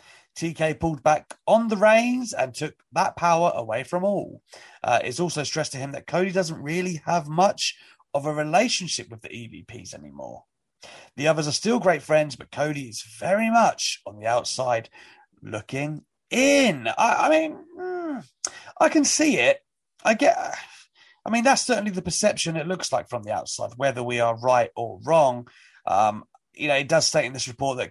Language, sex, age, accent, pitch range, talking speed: English, male, 30-49, British, 125-190 Hz, 185 wpm